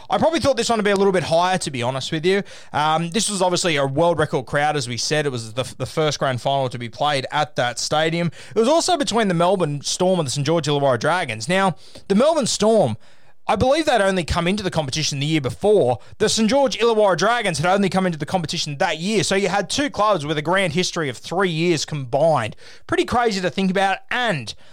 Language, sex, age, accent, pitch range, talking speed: English, male, 20-39, Australian, 150-200 Hz, 250 wpm